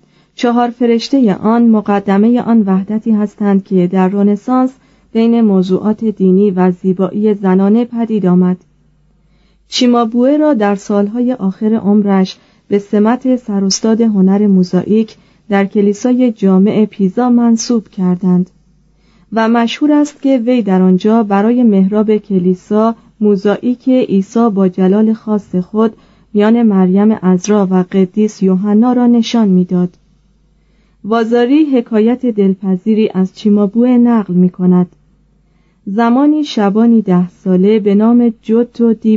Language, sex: Persian, female